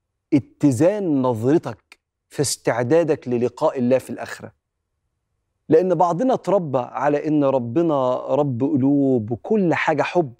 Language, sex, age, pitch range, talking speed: Arabic, male, 40-59, 120-170 Hz, 110 wpm